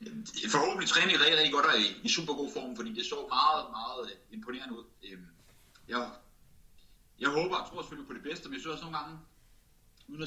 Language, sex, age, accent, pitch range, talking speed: Danish, male, 30-49, native, 115-170 Hz, 195 wpm